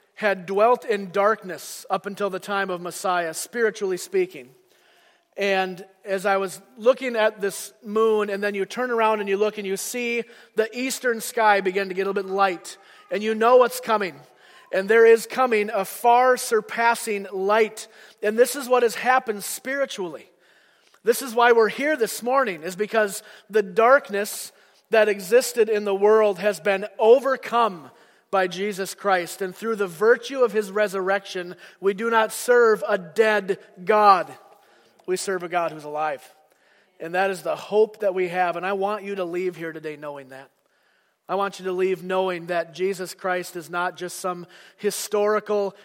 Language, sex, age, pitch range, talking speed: English, male, 40-59, 185-220 Hz, 175 wpm